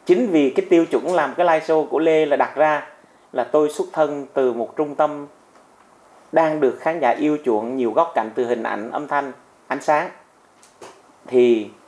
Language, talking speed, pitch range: Vietnamese, 195 wpm, 120-155 Hz